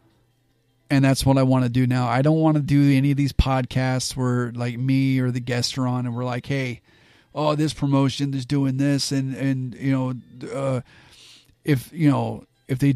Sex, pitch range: male, 120-135 Hz